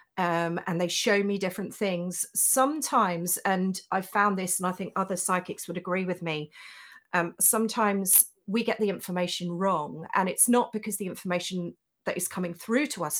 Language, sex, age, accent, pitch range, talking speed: English, female, 40-59, British, 170-210 Hz, 180 wpm